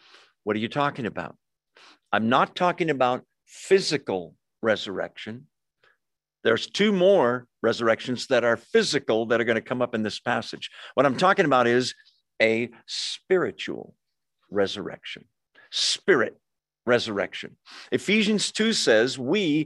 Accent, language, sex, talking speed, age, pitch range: American, English, male, 125 wpm, 50-69, 120-175 Hz